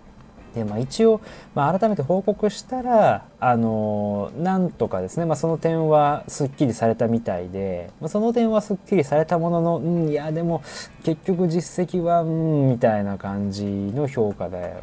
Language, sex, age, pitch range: Japanese, male, 20-39, 100-155 Hz